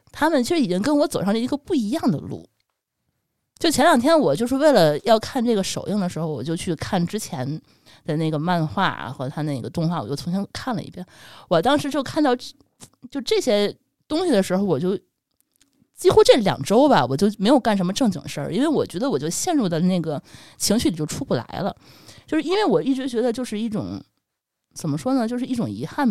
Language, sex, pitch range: Chinese, female, 170-255 Hz